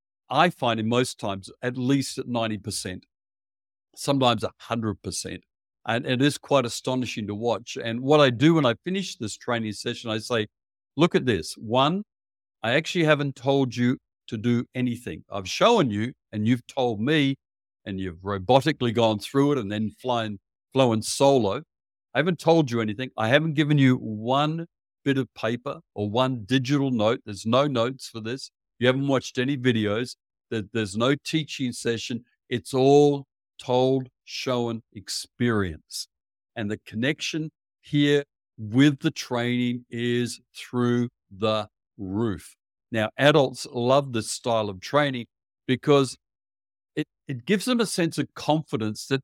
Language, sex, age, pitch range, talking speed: English, male, 50-69, 110-140 Hz, 150 wpm